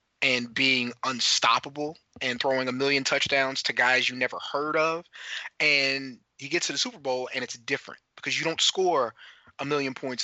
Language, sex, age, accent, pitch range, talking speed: English, male, 30-49, American, 125-155 Hz, 180 wpm